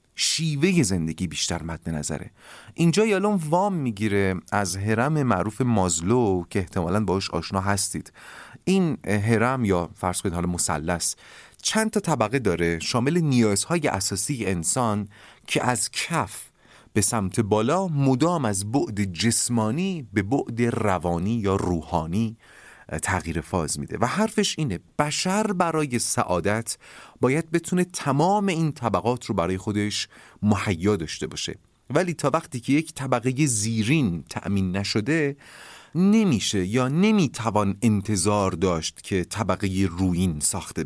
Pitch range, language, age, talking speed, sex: 95-145 Hz, Persian, 30-49, 125 wpm, male